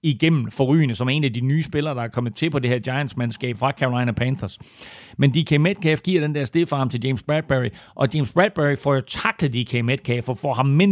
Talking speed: 230 wpm